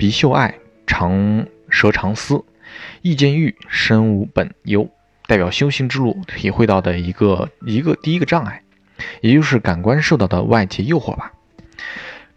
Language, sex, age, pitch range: Chinese, male, 20-39, 95-125 Hz